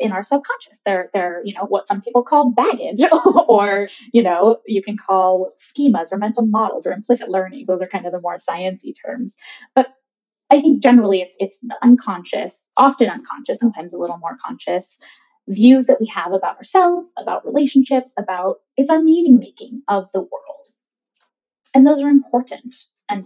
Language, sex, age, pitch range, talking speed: English, female, 10-29, 190-265 Hz, 175 wpm